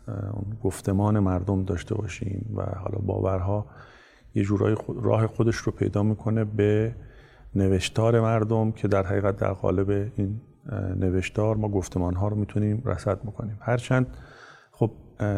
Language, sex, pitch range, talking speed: Persian, male, 100-115 Hz, 125 wpm